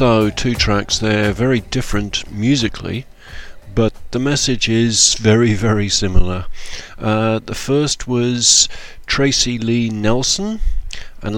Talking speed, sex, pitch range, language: 115 wpm, male, 100-120 Hz, English